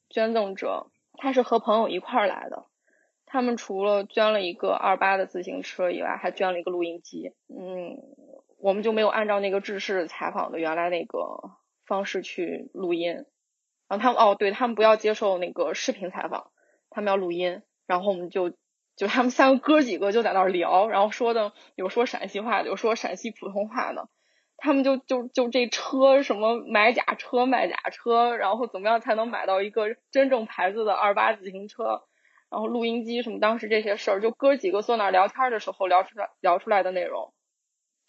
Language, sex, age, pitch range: Chinese, female, 20-39, 190-240 Hz